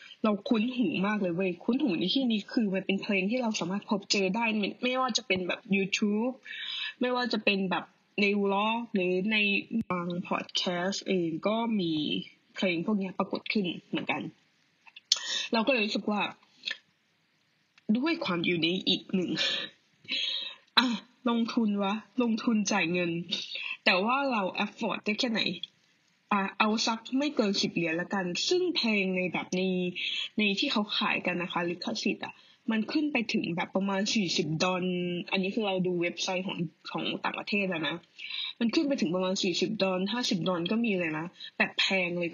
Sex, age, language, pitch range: female, 20-39, Thai, 180-230 Hz